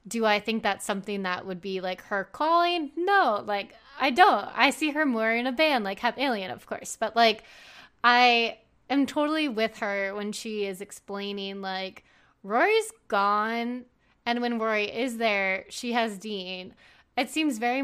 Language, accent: English, American